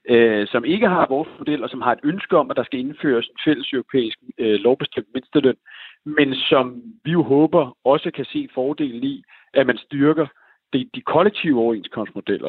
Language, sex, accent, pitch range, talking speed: Danish, male, native, 110-145 Hz, 185 wpm